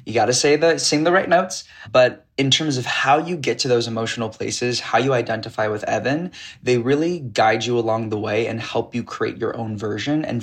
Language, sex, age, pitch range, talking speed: English, male, 20-39, 110-130 Hz, 230 wpm